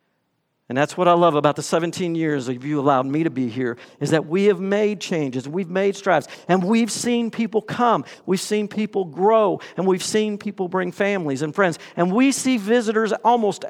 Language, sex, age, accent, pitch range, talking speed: English, male, 50-69, American, 170-235 Hz, 205 wpm